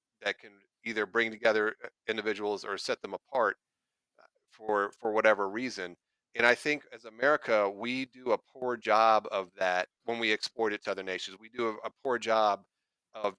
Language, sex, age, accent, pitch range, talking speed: English, male, 40-59, American, 100-120 Hz, 180 wpm